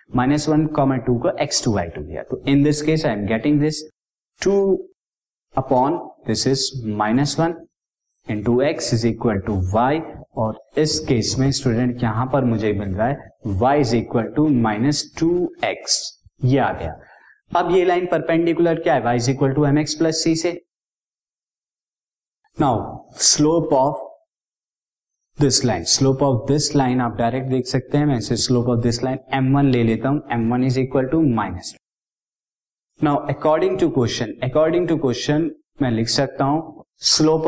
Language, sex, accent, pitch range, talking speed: Hindi, male, native, 125-155 Hz, 115 wpm